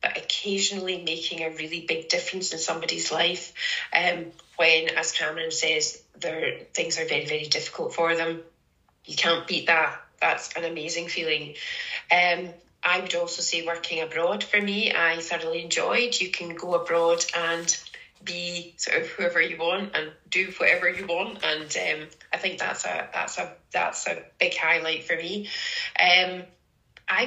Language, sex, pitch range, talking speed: English, female, 165-195 Hz, 165 wpm